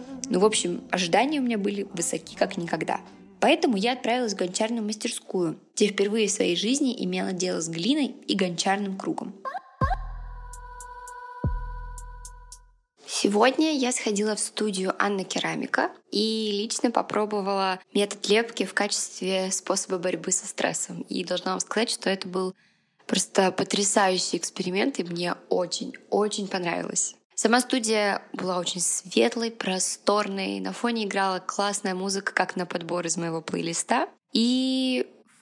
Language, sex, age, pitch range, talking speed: Russian, female, 20-39, 185-240 Hz, 135 wpm